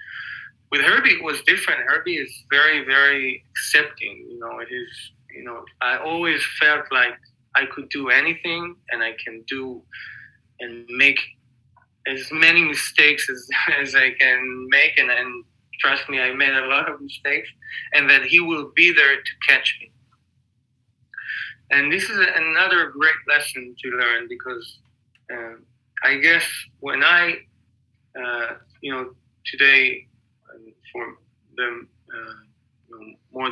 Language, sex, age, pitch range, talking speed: English, male, 20-39, 120-165 Hz, 140 wpm